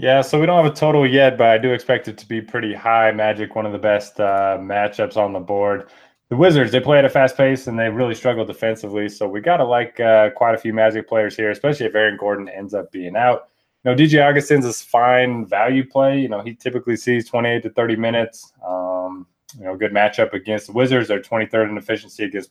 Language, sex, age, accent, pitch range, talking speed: English, male, 20-39, American, 105-125 Hz, 235 wpm